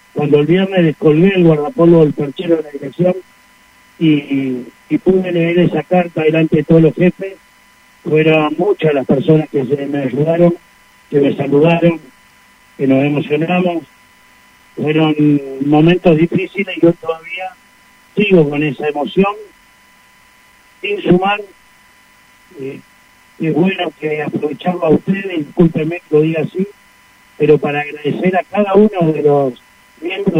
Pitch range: 150-185 Hz